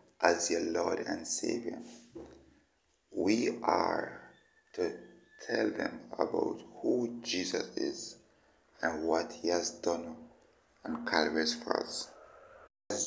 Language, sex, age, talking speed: English, male, 60-79, 105 wpm